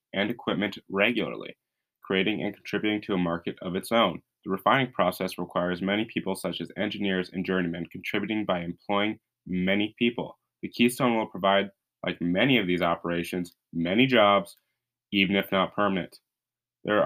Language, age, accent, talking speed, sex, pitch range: English, 20-39, American, 155 wpm, male, 95-110 Hz